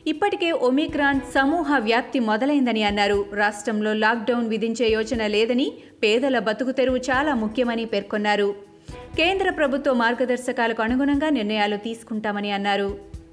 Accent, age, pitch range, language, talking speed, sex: native, 30-49, 215-270 Hz, Telugu, 70 wpm, female